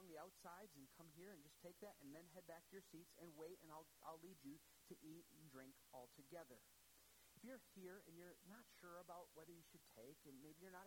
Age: 40-59